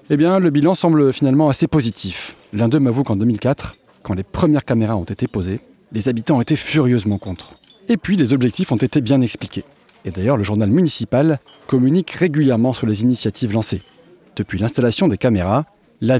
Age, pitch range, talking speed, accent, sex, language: 30-49, 105-150 Hz, 180 wpm, French, male, French